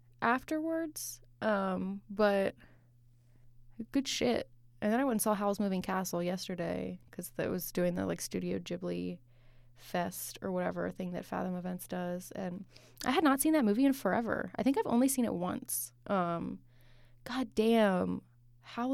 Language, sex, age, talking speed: English, female, 20-39, 160 wpm